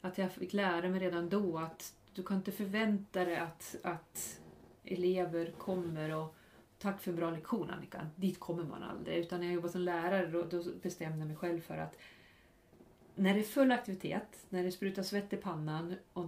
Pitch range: 170-200 Hz